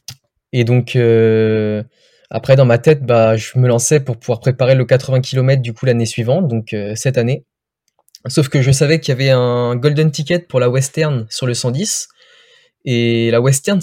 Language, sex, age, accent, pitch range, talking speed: French, male, 20-39, French, 115-145 Hz, 190 wpm